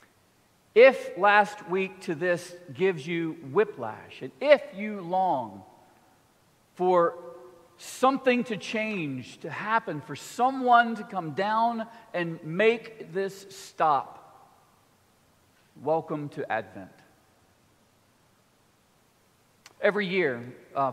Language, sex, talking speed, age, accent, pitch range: English, male, 95 wpm, 50-69, American, 150-215 Hz